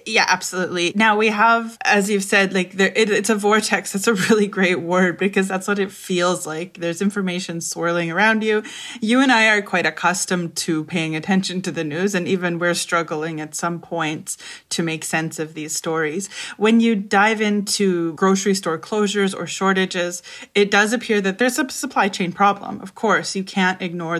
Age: 20-39